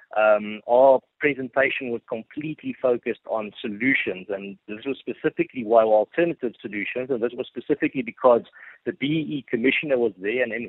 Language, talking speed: English, 150 wpm